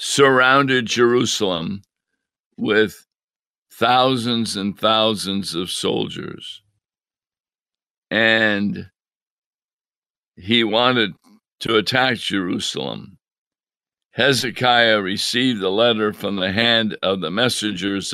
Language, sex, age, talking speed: English, male, 60-79, 80 wpm